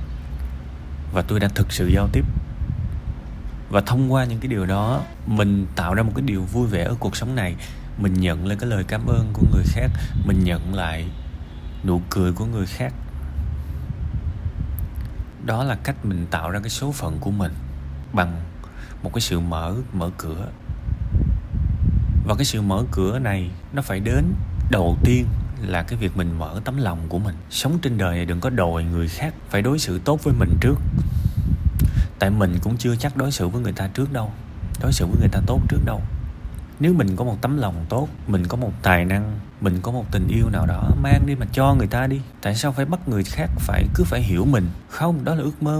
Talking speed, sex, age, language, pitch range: 210 wpm, male, 20-39, Vietnamese, 85-120 Hz